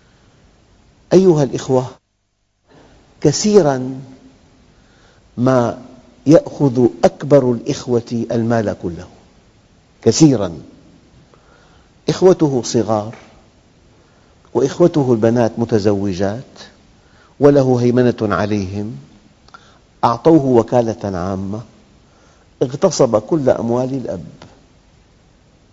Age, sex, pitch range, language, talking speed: 50-69, male, 110-140 Hz, Arabic, 60 wpm